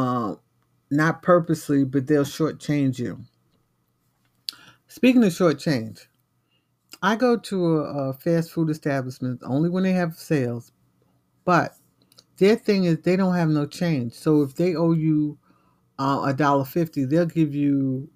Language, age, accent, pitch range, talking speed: English, 50-69, American, 130-170 Hz, 140 wpm